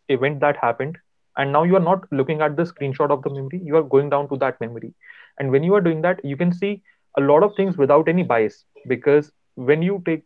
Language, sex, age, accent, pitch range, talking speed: Hindi, male, 30-49, native, 125-155 Hz, 245 wpm